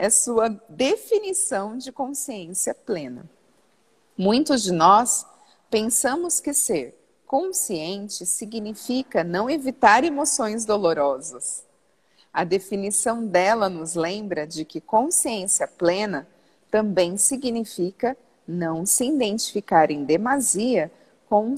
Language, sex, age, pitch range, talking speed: Portuguese, female, 40-59, 190-260 Hz, 95 wpm